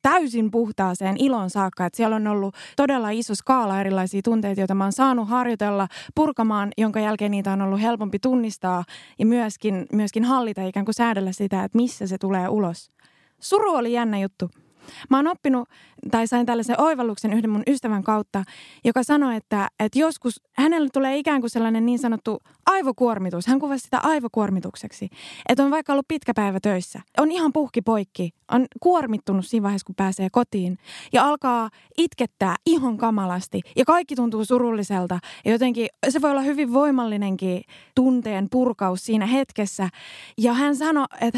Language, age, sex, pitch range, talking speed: Finnish, 20-39, female, 200-260 Hz, 160 wpm